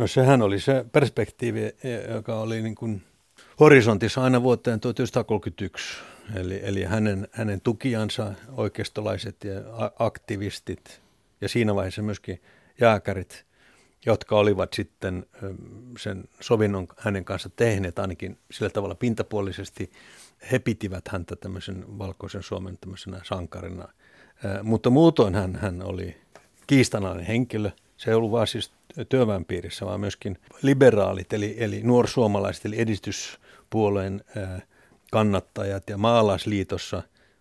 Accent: native